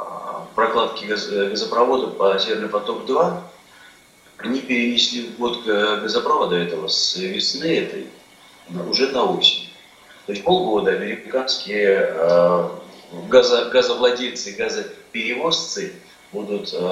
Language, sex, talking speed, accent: Russian, male, 90 wpm, native